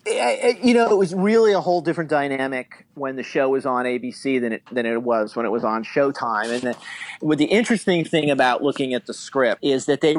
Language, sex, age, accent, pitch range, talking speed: English, male, 40-59, American, 130-165 Hz, 225 wpm